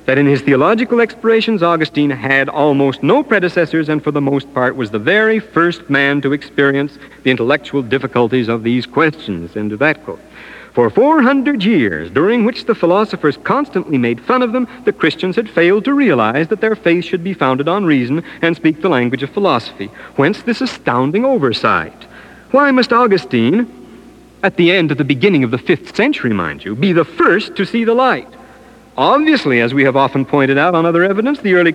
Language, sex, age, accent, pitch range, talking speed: English, male, 60-79, American, 130-185 Hz, 195 wpm